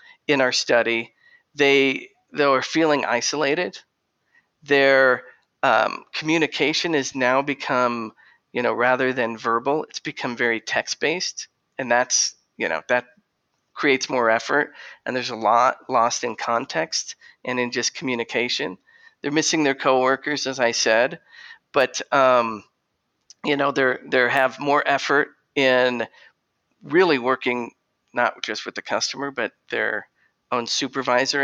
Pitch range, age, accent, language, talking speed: 125-150 Hz, 40-59, American, English, 135 wpm